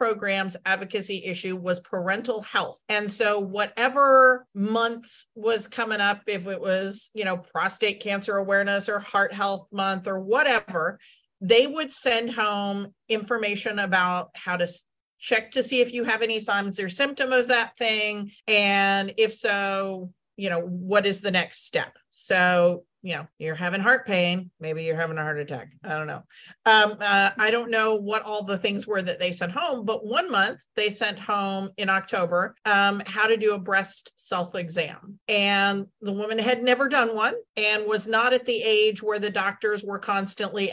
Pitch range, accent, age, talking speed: 190-230 Hz, American, 40-59, 180 wpm